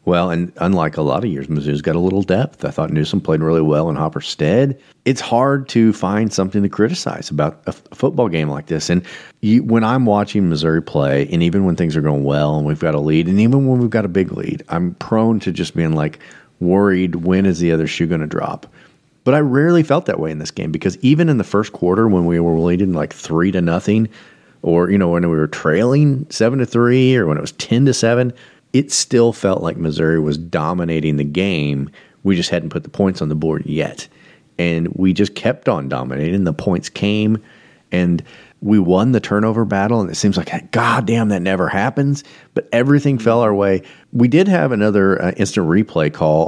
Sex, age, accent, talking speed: male, 40-59, American, 225 wpm